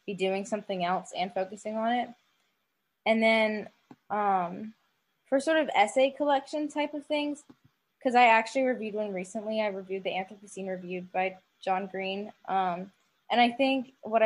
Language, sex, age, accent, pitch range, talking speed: English, female, 10-29, American, 185-220 Hz, 155 wpm